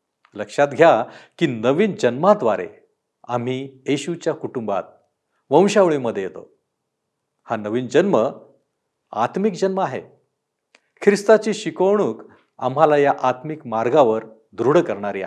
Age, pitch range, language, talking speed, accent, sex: 50-69, 115-170 Hz, Marathi, 95 wpm, native, male